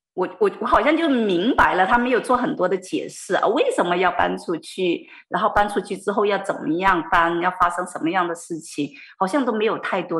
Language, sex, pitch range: Chinese, female, 160-220 Hz